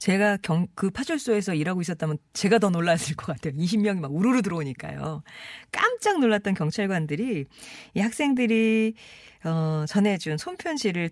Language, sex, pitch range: Korean, female, 150-220 Hz